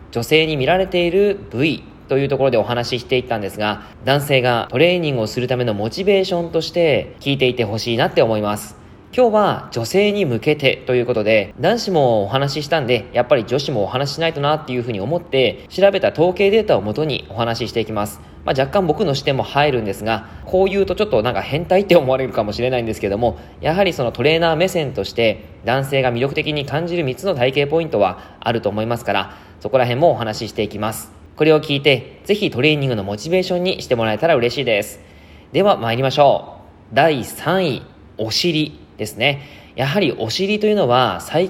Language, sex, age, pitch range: Japanese, male, 20-39, 115-165 Hz